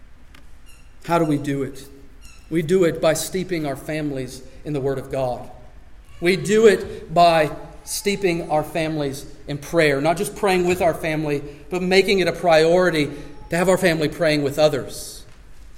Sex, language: male, English